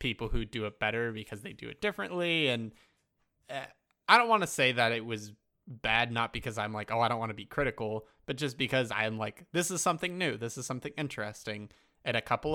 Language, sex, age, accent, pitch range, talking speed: English, male, 20-39, American, 110-130 Hz, 225 wpm